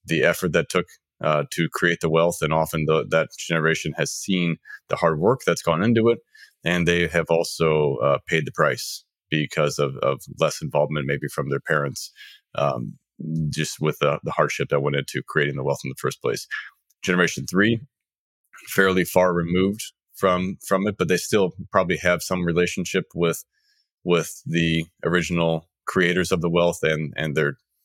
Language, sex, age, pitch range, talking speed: English, male, 30-49, 80-95 Hz, 175 wpm